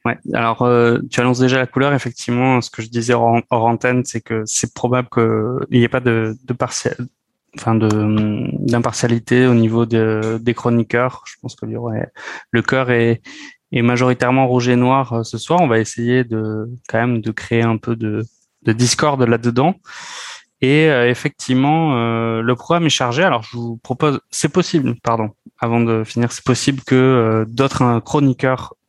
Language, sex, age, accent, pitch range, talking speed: French, male, 20-39, French, 115-135 Hz, 185 wpm